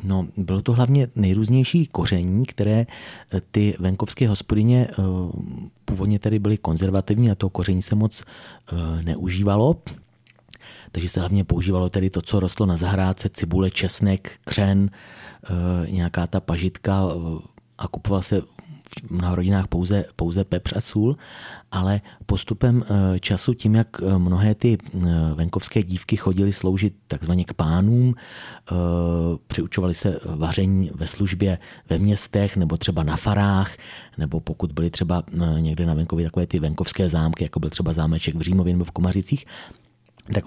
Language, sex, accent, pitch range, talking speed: Czech, male, native, 90-110 Hz, 135 wpm